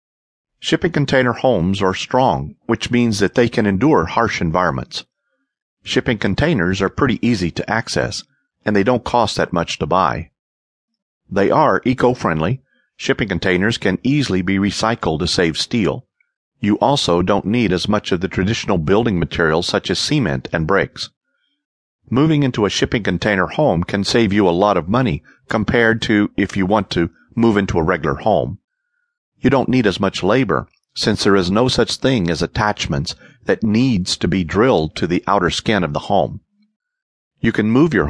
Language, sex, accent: English, male, American